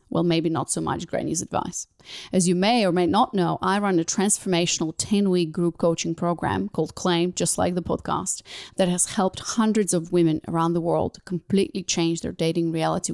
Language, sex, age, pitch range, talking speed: English, female, 30-49, 170-200 Hz, 190 wpm